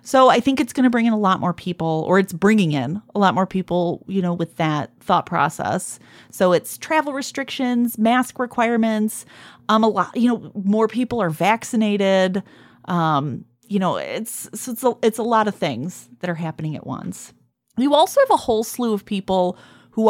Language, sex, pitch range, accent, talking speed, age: English, female, 175-235 Hz, American, 200 wpm, 30-49